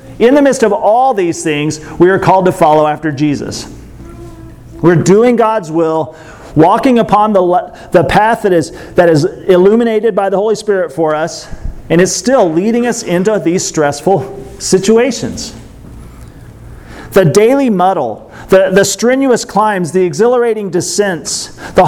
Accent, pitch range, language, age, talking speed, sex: American, 165-215 Hz, English, 40-59, 150 wpm, male